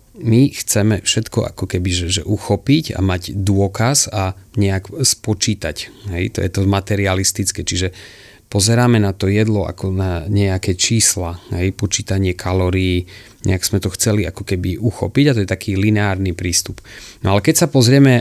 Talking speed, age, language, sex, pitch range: 160 wpm, 30-49, Slovak, male, 95-115 Hz